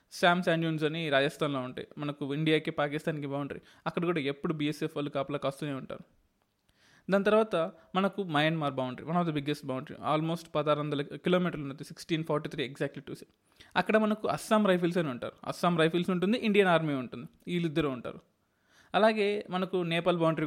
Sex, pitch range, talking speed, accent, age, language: male, 145-175 Hz, 160 wpm, native, 20-39, Telugu